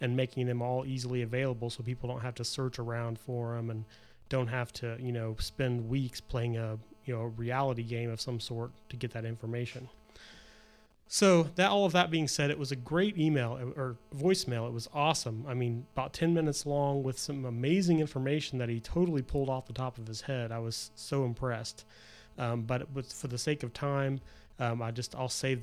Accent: American